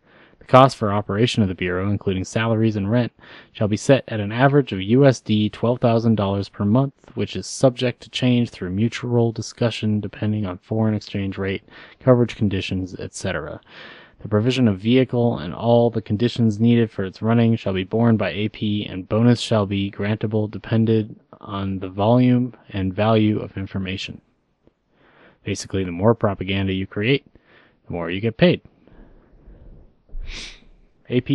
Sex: male